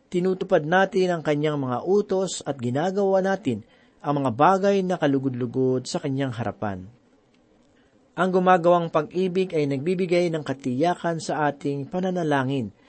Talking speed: 125 wpm